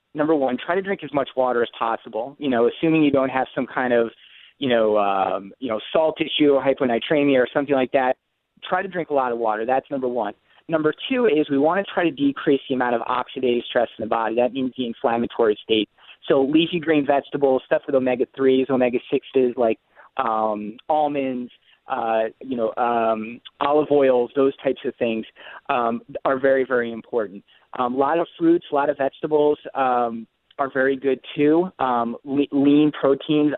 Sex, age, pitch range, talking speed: male, 30-49, 120-150 Hz, 195 wpm